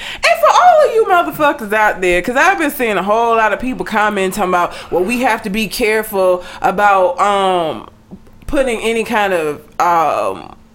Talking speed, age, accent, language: 180 wpm, 20-39, American, English